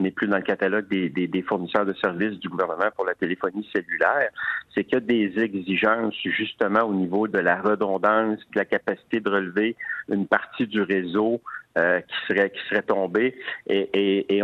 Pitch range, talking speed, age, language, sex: 105-120 Hz, 195 wpm, 50-69, French, male